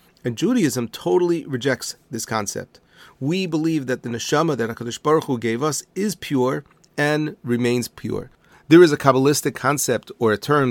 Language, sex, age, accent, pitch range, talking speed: English, male, 40-59, American, 120-150 Hz, 170 wpm